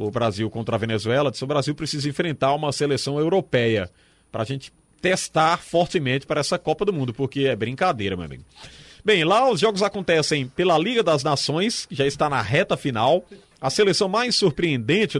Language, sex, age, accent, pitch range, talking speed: Portuguese, male, 30-49, Brazilian, 135-185 Hz, 185 wpm